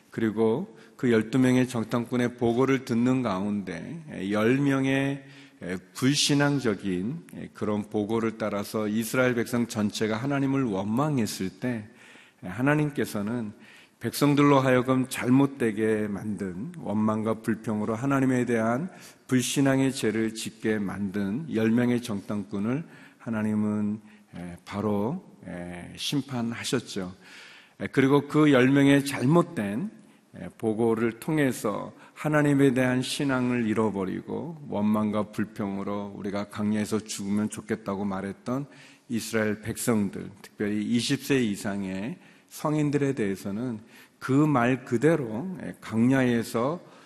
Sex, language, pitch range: male, Korean, 105-130 Hz